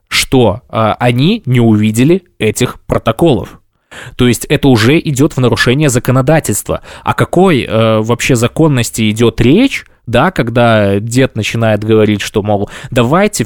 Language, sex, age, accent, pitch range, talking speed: Russian, male, 20-39, native, 110-135 Hz, 135 wpm